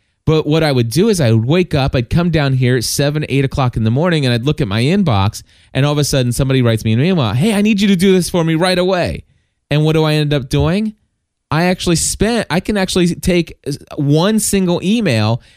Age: 20-39